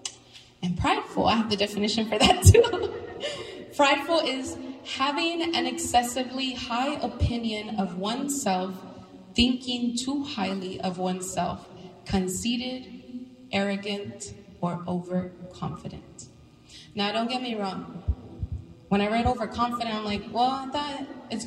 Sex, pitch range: female, 200-265 Hz